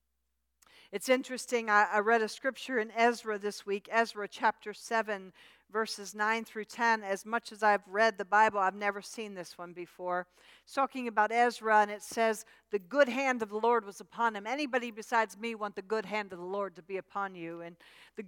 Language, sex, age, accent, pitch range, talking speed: English, female, 50-69, American, 215-280 Hz, 205 wpm